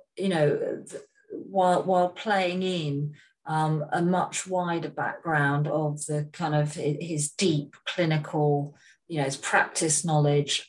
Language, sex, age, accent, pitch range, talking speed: English, female, 40-59, British, 150-195 Hz, 130 wpm